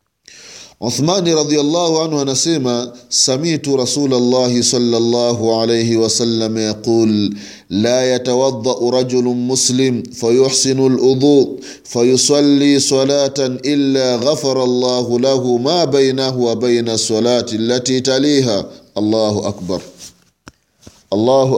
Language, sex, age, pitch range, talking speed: Swahili, male, 30-49, 115-145 Hz, 95 wpm